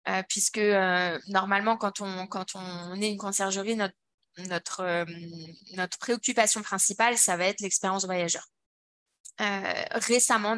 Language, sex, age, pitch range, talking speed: French, female, 20-39, 190-225 Hz, 135 wpm